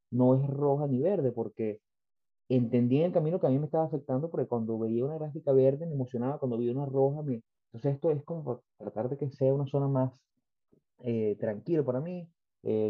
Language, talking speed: Spanish, 210 wpm